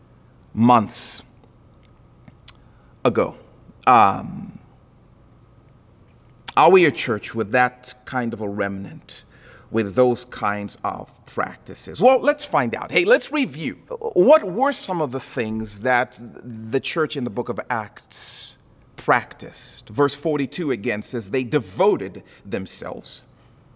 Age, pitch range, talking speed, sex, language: 40-59, 125-195 Hz, 120 wpm, male, English